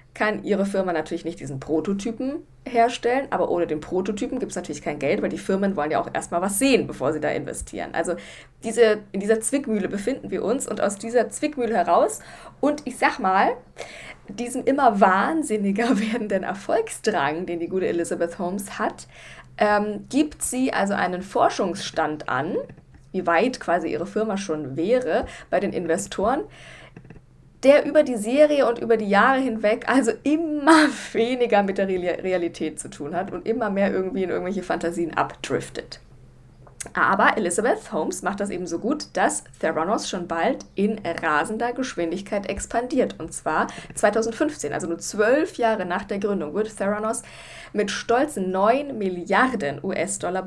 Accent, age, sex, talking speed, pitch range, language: German, 20-39, female, 160 wpm, 185-240 Hz, German